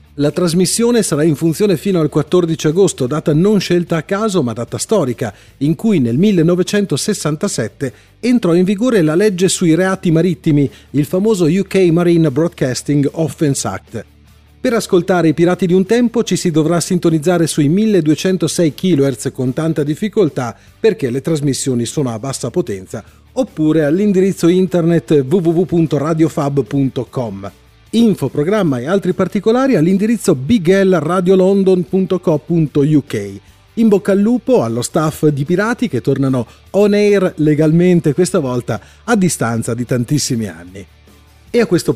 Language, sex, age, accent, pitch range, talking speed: Italian, male, 40-59, native, 140-190 Hz, 135 wpm